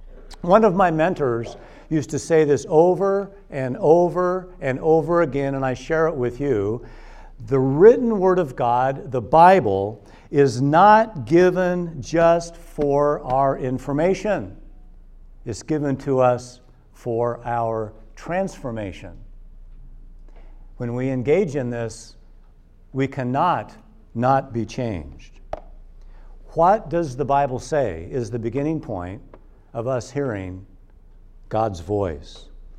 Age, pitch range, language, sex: 60-79, 105-145 Hz, English, male